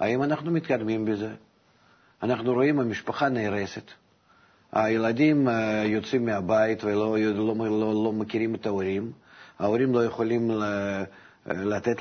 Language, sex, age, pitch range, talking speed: Hebrew, male, 50-69, 105-125 Hz, 110 wpm